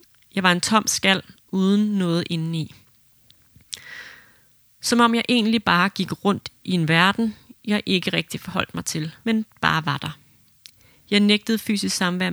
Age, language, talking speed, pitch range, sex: 30-49, Danish, 155 wpm, 160-205 Hz, female